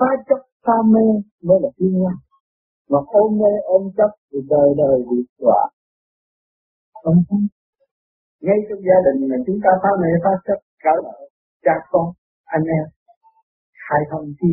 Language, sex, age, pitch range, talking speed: Vietnamese, male, 50-69, 140-205 Hz, 150 wpm